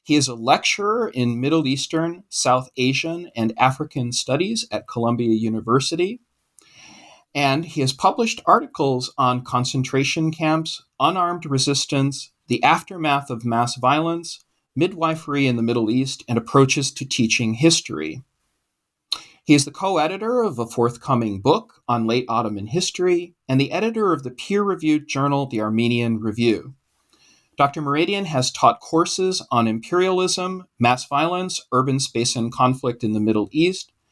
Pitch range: 120-160 Hz